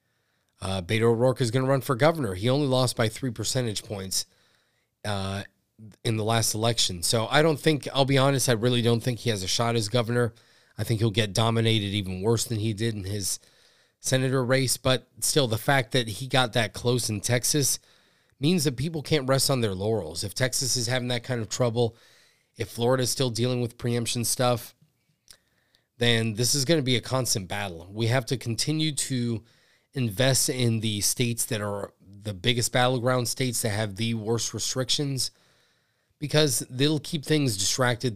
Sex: male